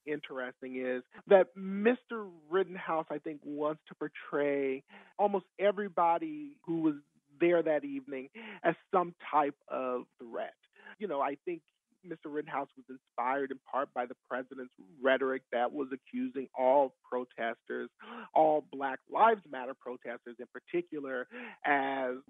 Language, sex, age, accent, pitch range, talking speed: English, male, 40-59, American, 130-170 Hz, 130 wpm